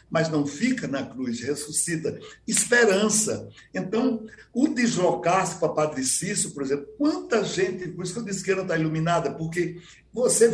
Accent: Brazilian